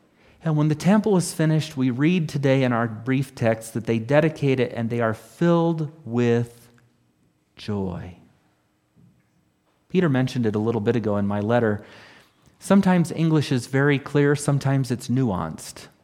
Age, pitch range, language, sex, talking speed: 40-59, 110-145 Hz, English, male, 155 wpm